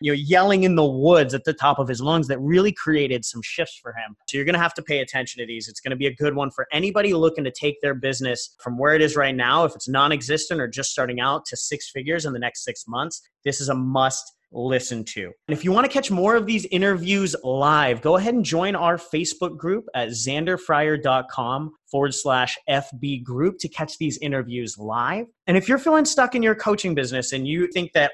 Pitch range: 130-170 Hz